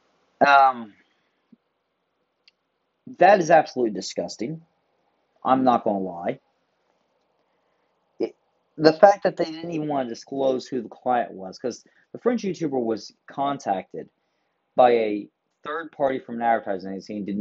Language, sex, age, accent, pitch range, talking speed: English, male, 30-49, American, 115-145 Hz, 140 wpm